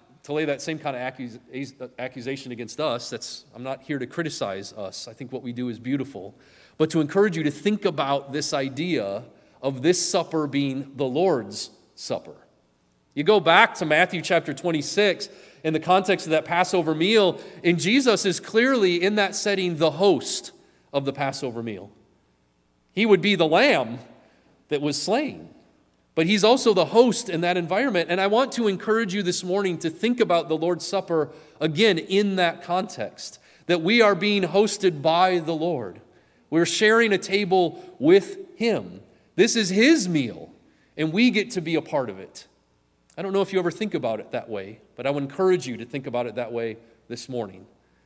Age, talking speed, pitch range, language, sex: 30-49, 190 wpm, 135-195 Hz, English, male